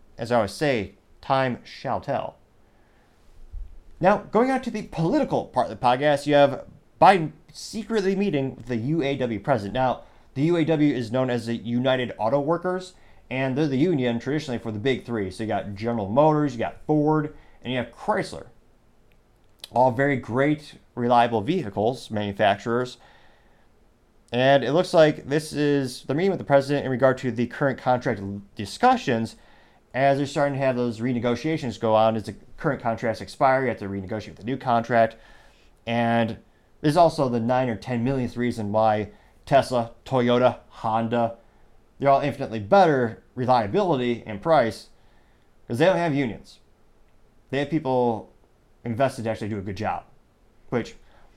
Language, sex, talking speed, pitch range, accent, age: English, male, 160 wpm, 115-140 Hz, American, 30-49